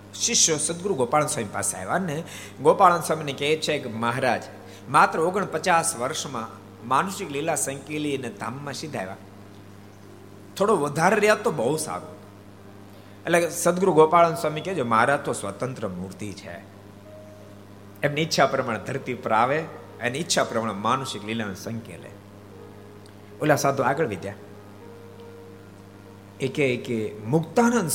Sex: male